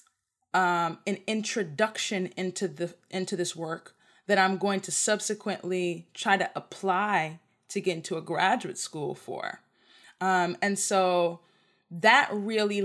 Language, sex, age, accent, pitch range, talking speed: English, female, 20-39, American, 185-215 Hz, 130 wpm